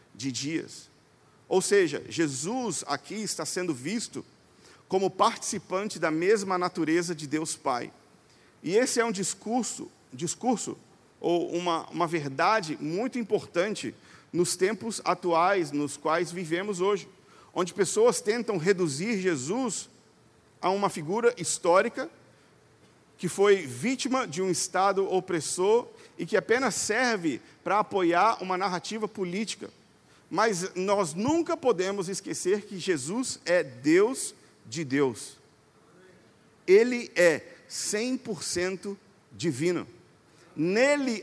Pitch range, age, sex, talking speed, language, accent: 170-220 Hz, 50-69, male, 110 wpm, Portuguese, Brazilian